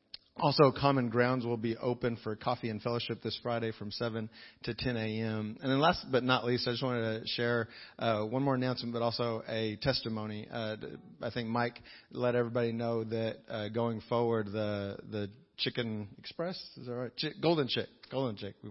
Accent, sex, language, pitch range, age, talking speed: American, male, English, 110-125 Hz, 40-59, 190 wpm